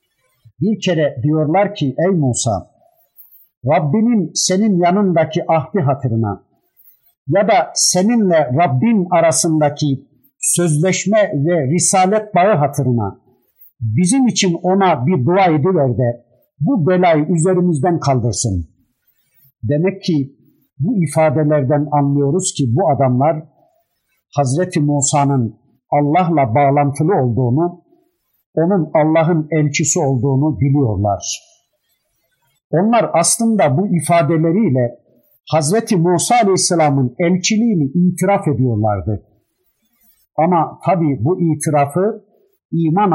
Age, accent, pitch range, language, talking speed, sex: 50-69, native, 140-190 Hz, Turkish, 90 wpm, male